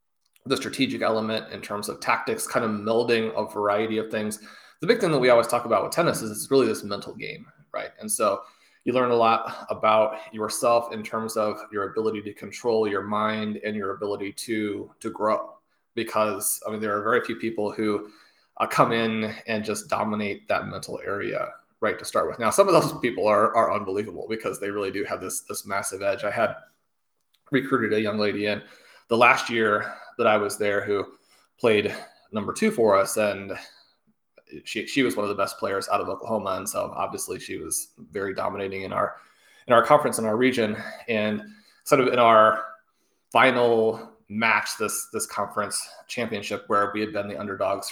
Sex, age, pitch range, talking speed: male, 20-39, 105-115 Hz, 195 wpm